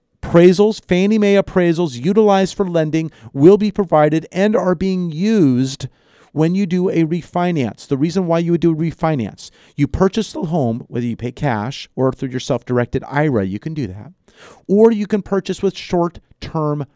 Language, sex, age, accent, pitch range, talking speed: English, male, 40-59, American, 125-170 Hz, 175 wpm